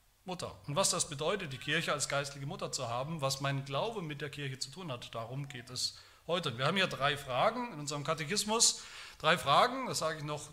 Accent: German